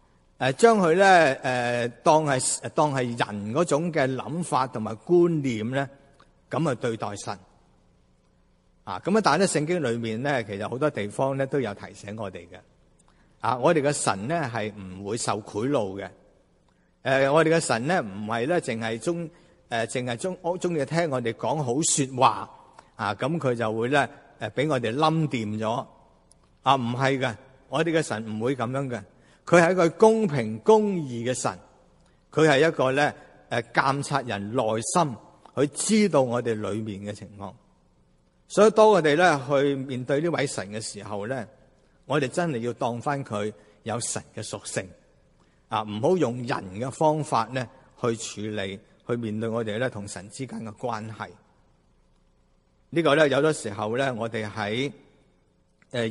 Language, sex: Chinese, male